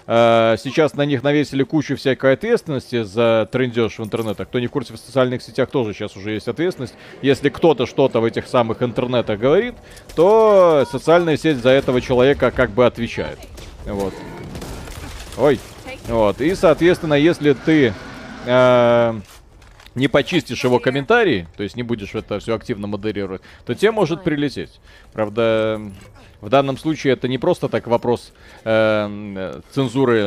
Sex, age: male, 30-49